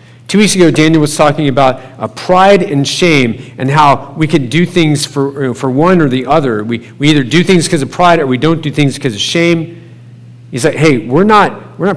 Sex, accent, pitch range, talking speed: male, American, 125-170 Hz, 230 wpm